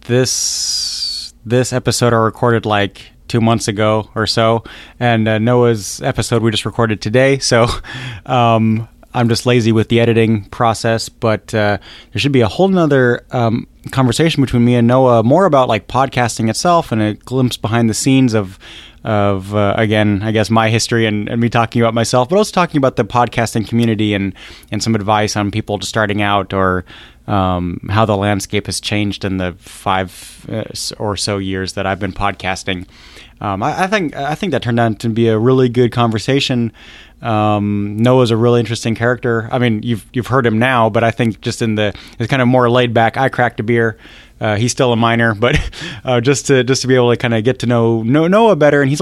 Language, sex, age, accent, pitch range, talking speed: English, male, 20-39, American, 105-125 Hz, 210 wpm